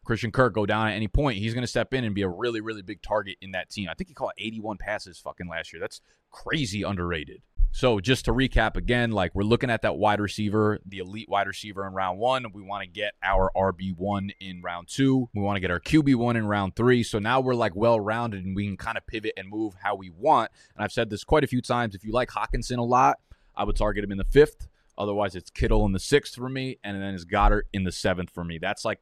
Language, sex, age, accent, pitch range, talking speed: English, male, 20-39, American, 95-115 Hz, 270 wpm